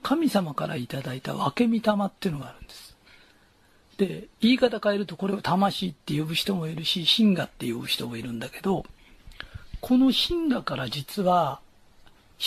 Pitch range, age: 165-265 Hz, 40-59